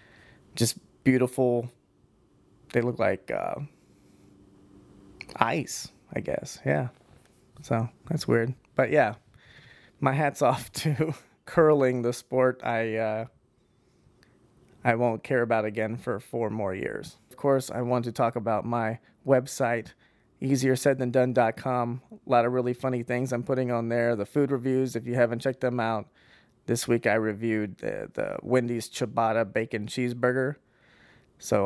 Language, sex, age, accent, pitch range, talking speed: English, male, 20-39, American, 110-130 Hz, 145 wpm